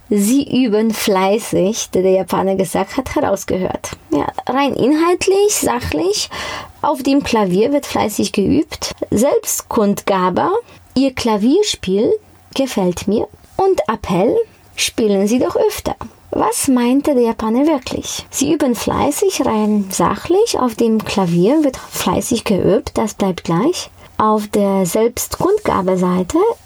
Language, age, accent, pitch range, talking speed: German, 20-39, German, 205-300 Hz, 115 wpm